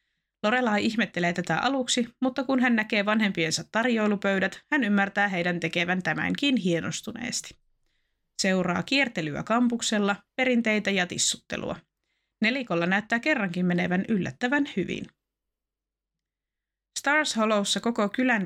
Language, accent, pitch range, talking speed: Finnish, native, 180-235 Hz, 105 wpm